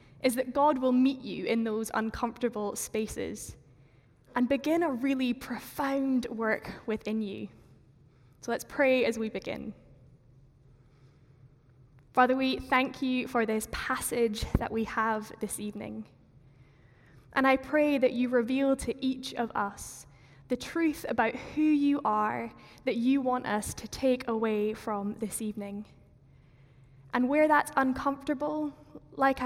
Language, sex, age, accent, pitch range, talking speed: English, female, 10-29, British, 185-265 Hz, 135 wpm